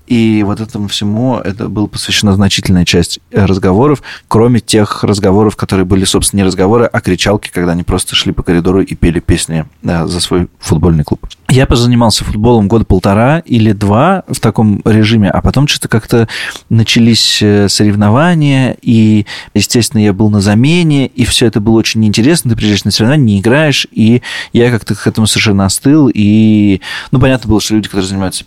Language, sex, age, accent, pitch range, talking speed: Russian, male, 20-39, native, 95-120 Hz, 175 wpm